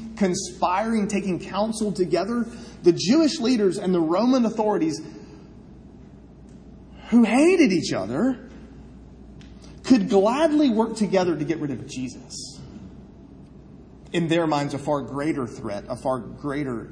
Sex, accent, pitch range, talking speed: male, American, 140-230 Hz, 120 wpm